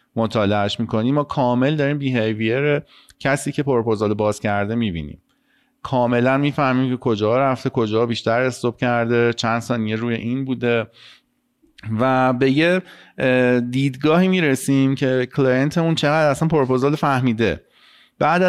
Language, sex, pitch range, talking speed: Persian, male, 115-140 Hz, 125 wpm